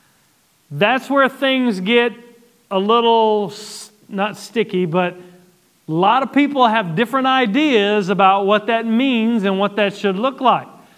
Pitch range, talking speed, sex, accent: 200-250 Hz, 140 wpm, male, American